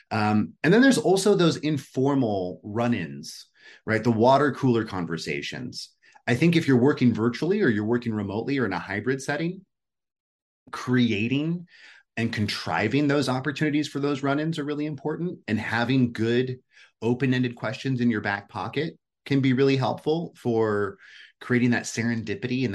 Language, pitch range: English, 100-135 Hz